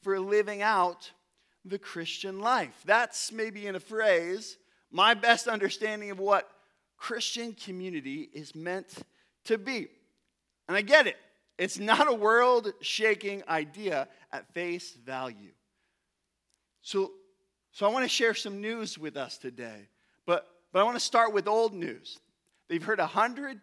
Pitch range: 195-255 Hz